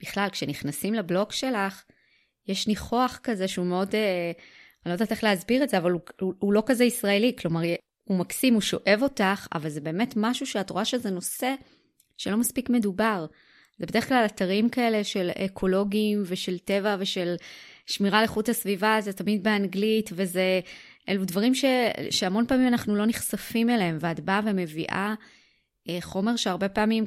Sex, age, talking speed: female, 20-39, 155 wpm